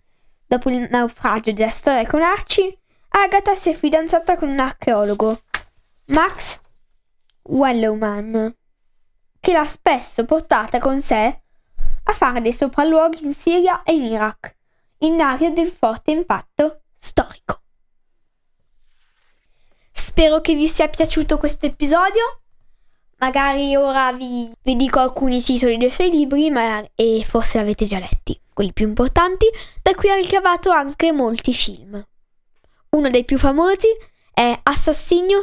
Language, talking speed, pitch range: Italian, 130 wpm, 235-310 Hz